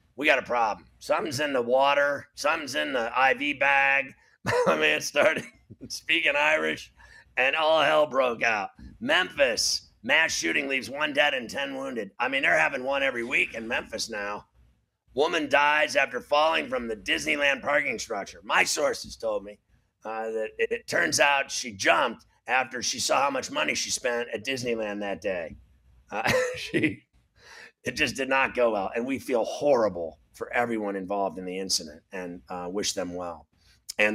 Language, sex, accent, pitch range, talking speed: English, male, American, 105-140 Hz, 175 wpm